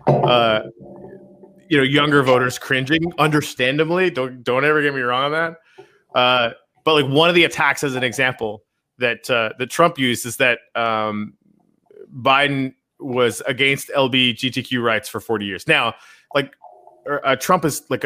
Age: 30-49